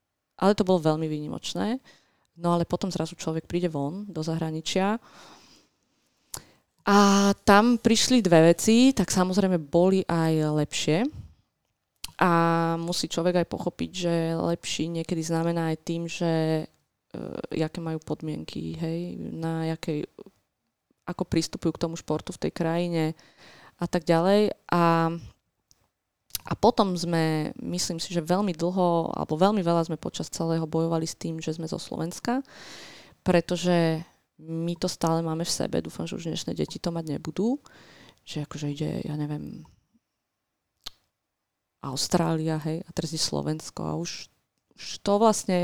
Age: 20-39